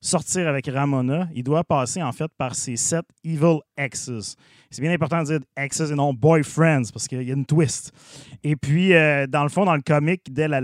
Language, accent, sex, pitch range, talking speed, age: French, Canadian, male, 130-165 Hz, 235 wpm, 30-49